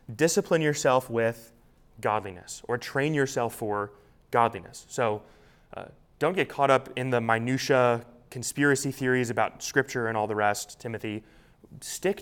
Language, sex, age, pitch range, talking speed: English, male, 20-39, 110-135 Hz, 135 wpm